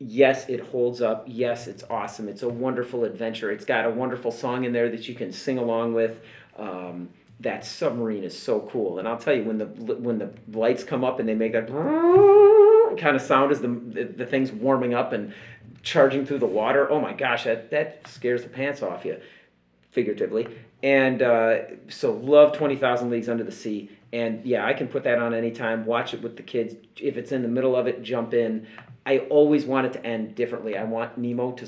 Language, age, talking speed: English, 40-59, 215 wpm